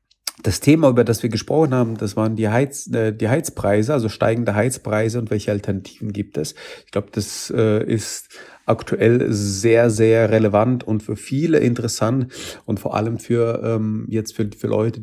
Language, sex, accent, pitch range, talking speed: German, male, German, 100-115 Hz, 165 wpm